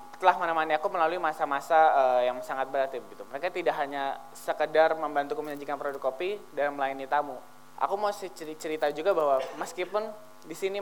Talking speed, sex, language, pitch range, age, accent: 160 wpm, male, Indonesian, 145-180 Hz, 20-39, native